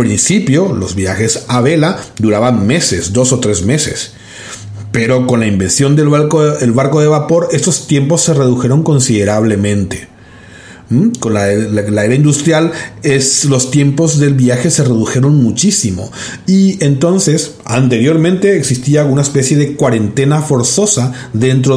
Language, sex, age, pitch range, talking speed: Spanish, male, 40-59, 115-150 Hz, 140 wpm